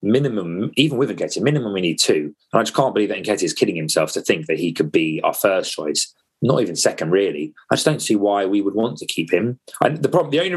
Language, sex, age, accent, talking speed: English, male, 30-49, British, 265 wpm